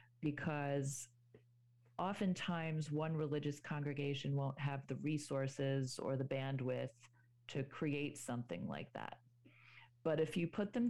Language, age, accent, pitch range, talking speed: English, 40-59, American, 125-165 Hz, 120 wpm